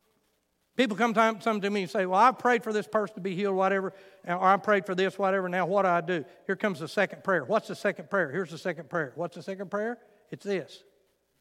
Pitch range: 165-215 Hz